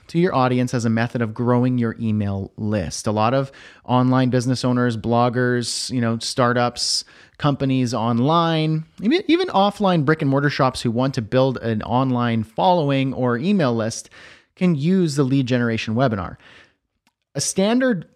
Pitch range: 120-150 Hz